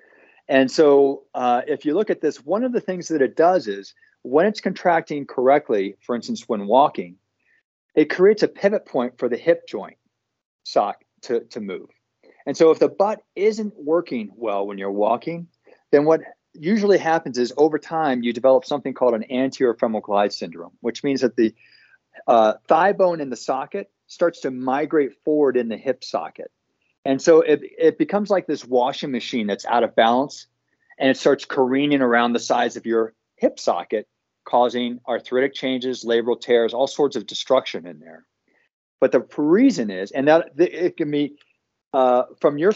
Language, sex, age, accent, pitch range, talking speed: English, male, 40-59, American, 125-180 Hz, 180 wpm